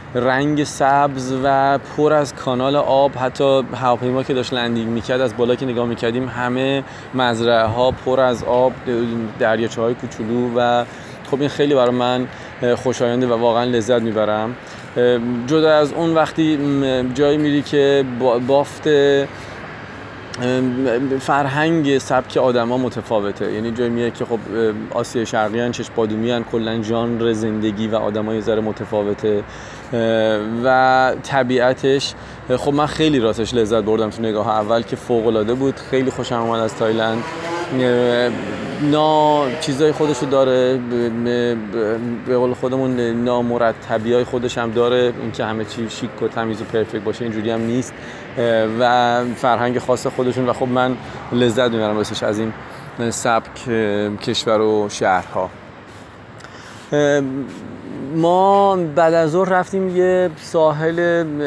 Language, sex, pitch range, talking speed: Persian, male, 115-135 Hz, 135 wpm